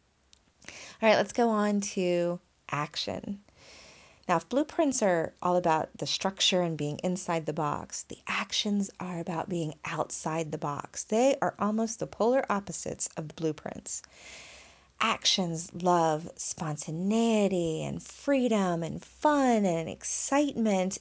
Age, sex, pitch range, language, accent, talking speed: 30-49, female, 175-225 Hz, English, American, 130 wpm